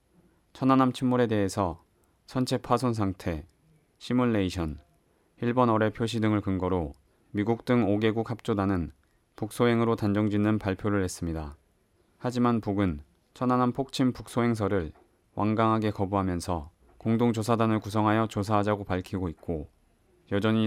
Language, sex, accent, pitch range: Korean, male, native, 95-115 Hz